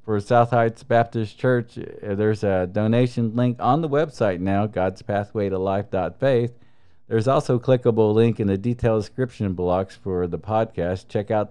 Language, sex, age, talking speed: English, male, 50-69, 170 wpm